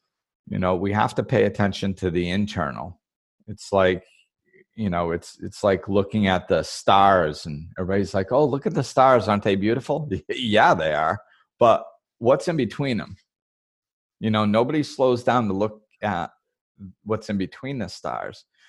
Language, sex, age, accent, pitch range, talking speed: English, male, 40-59, American, 95-115 Hz, 170 wpm